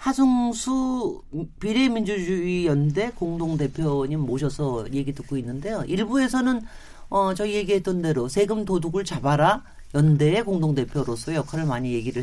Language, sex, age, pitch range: Korean, male, 40-59, 150-210 Hz